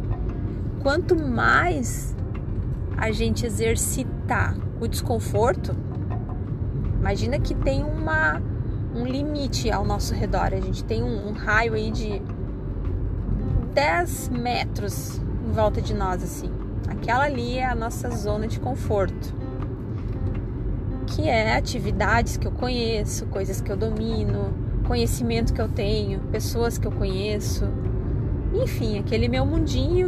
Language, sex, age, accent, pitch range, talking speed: Portuguese, female, 20-39, Brazilian, 100-115 Hz, 120 wpm